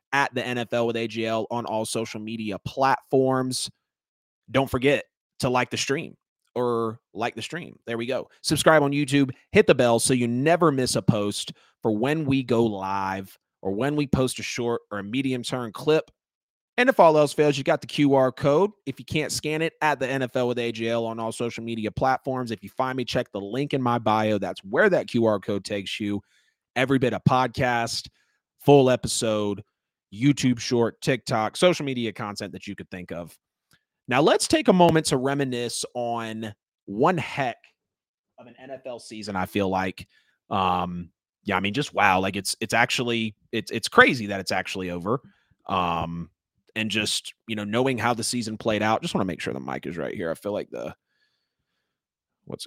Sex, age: male, 30-49